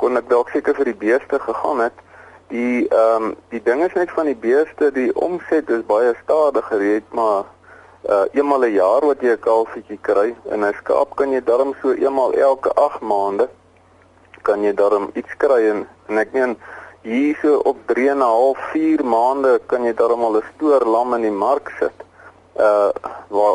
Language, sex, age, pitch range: English, male, 40-59, 110-150 Hz